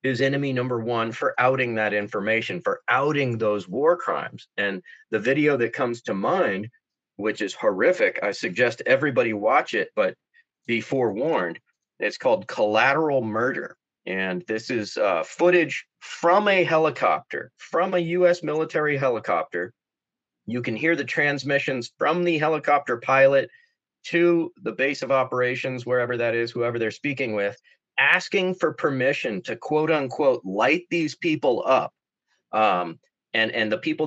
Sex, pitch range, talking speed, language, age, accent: male, 115-175 Hz, 150 wpm, English, 30-49, American